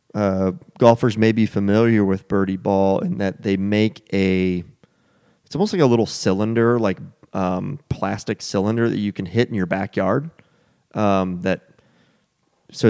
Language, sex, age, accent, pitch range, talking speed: English, male, 30-49, American, 100-120 Hz, 155 wpm